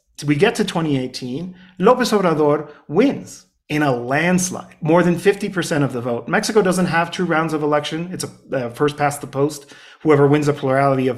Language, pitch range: English, 140-185 Hz